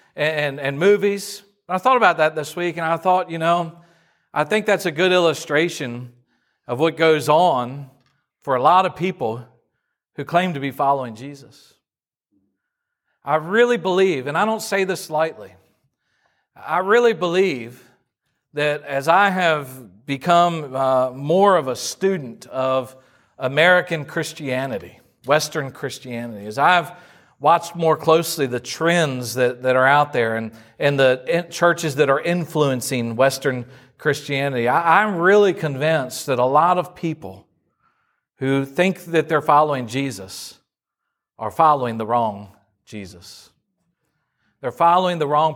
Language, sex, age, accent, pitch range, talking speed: English, male, 40-59, American, 135-185 Hz, 140 wpm